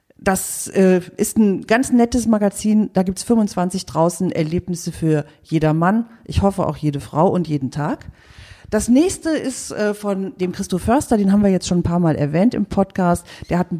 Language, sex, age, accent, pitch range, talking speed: German, female, 40-59, German, 160-195 Hz, 185 wpm